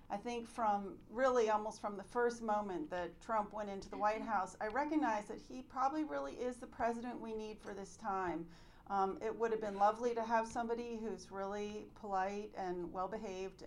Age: 40-59